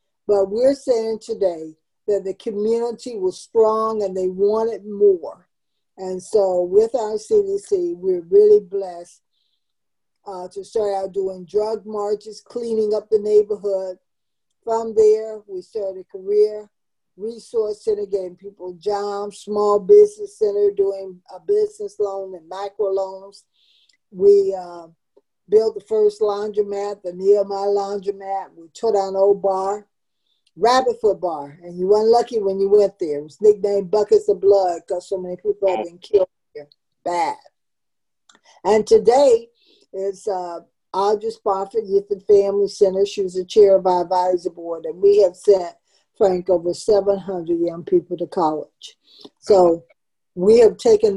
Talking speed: 150 wpm